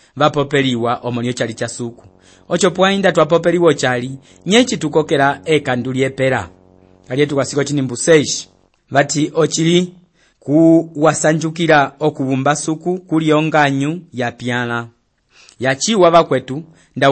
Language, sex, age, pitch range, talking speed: English, male, 30-49, 130-155 Hz, 105 wpm